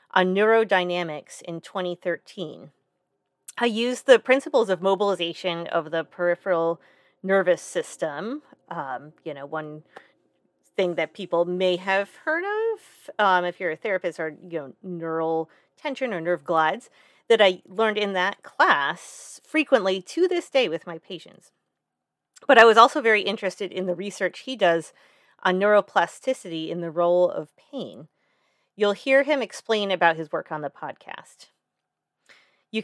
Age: 30-49